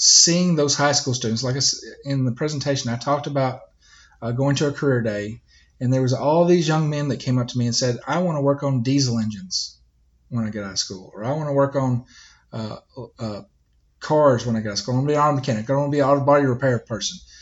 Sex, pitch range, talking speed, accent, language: male, 130-155 Hz, 260 wpm, American, English